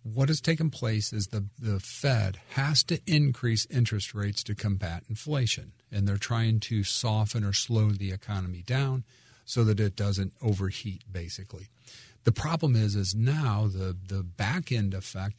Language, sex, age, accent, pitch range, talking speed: English, male, 50-69, American, 100-125 Hz, 160 wpm